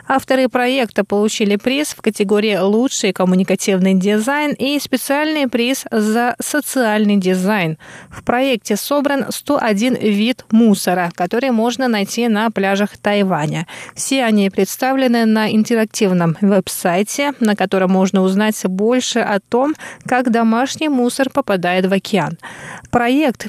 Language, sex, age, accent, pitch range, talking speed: Russian, female, 20-39, native, 195-250 Hz, 120 wpm